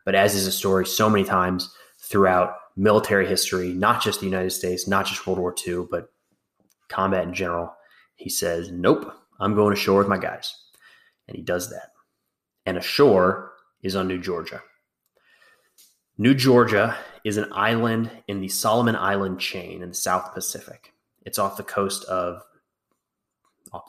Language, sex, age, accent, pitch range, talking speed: English, male, 20-39, American, 90-100 Hz, 160 wpm